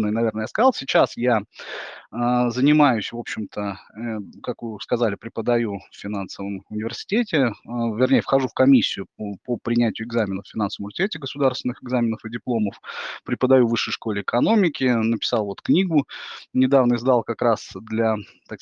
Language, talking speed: Russian, 140 wpm